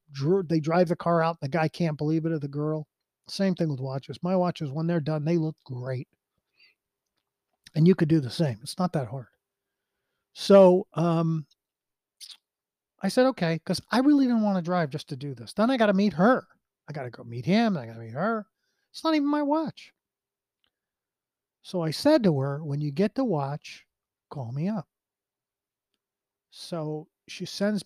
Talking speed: 195 wpm